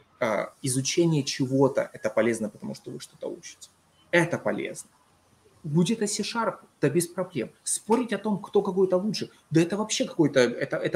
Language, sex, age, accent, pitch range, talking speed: Russian, male, 20-39, native, 140-195 Hz, 160 wpm